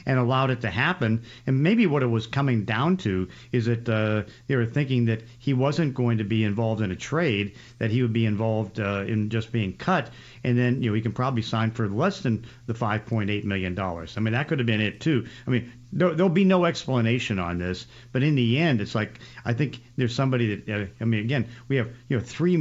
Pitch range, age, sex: 110-125 Hz, 50-69, male